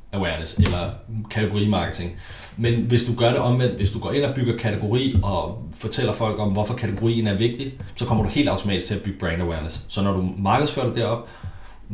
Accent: native